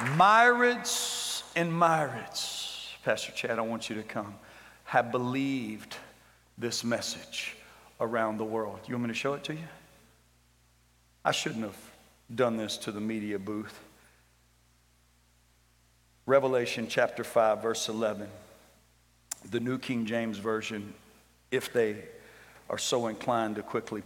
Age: 50-69